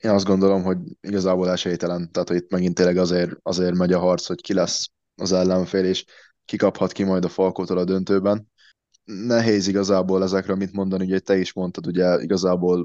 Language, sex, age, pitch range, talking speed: Hungarian, male, 20-39, 85-95 Hz, 185 wpm